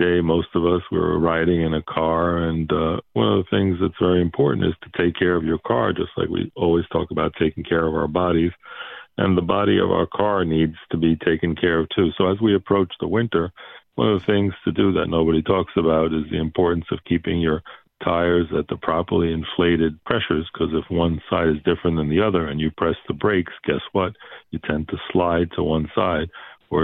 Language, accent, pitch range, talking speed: English, American, 80-85 Hz, 225 wpm